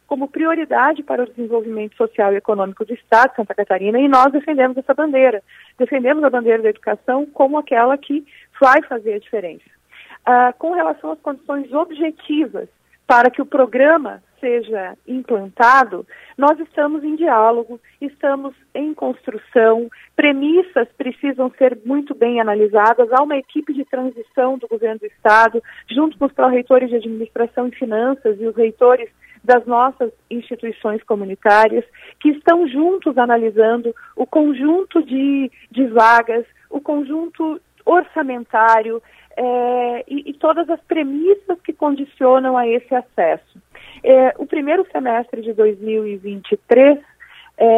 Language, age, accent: Portuguese, 40-59, Brazilian